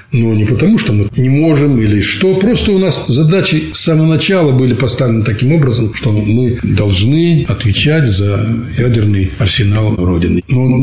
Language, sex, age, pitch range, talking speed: Russian, male, 60-79, 105-155 Hz, 165 wpm